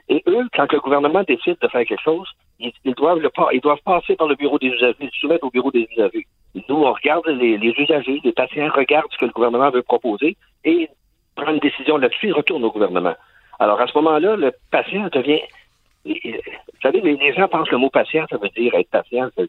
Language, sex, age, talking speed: French, male, 60-79, 240 wpm